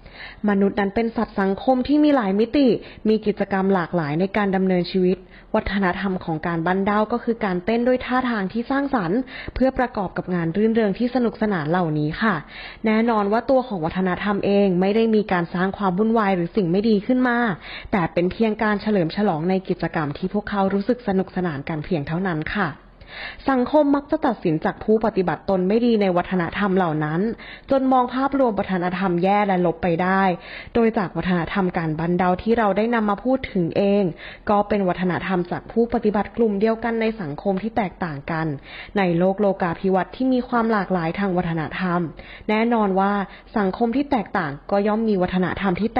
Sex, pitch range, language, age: female, 180-225 Hz, Thai, 20-39